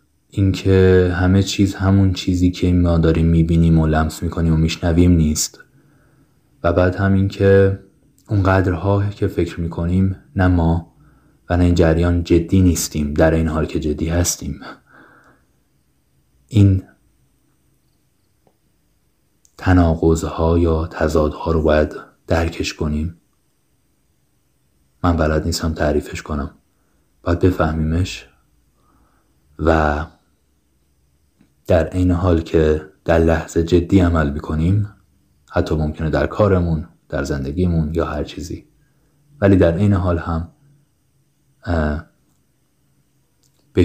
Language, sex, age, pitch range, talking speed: Persian, male, 30-49, 80-90 Hz, 105 wpm